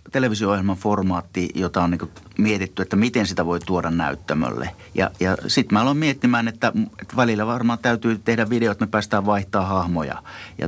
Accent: native